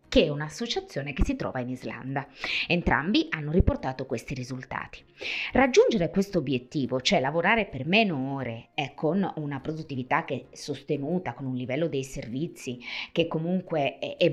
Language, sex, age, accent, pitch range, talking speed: Italian, female, 30-49, native, 135-205 Hz, 155 wpm